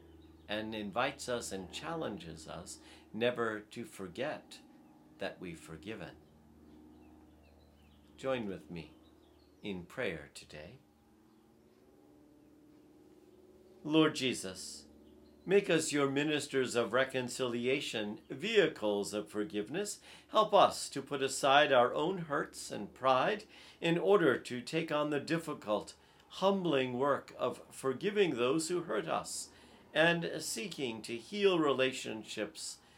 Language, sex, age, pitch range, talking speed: English, male, 50-69, 80-135 Hz, 105 wpm